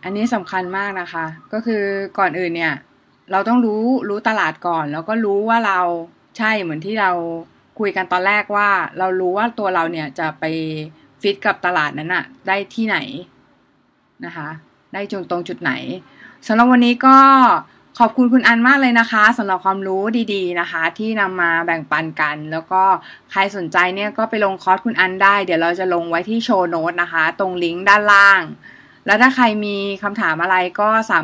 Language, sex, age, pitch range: Thai, female, 20-39, 165-215 Hz